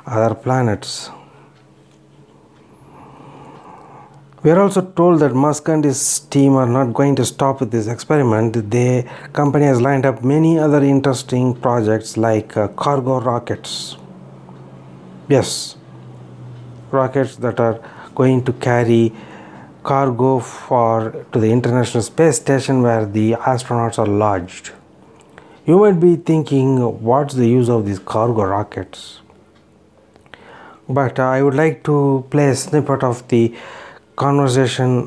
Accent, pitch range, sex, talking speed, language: Indian, 110-140 Hz, male, 125 wpm, English